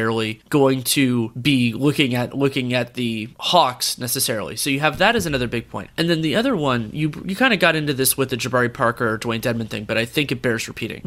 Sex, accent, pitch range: male, American, 125-165 Hz